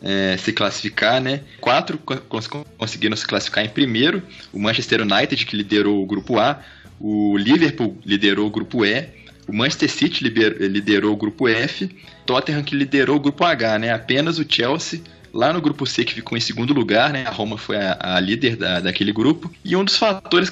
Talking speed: 180 wpm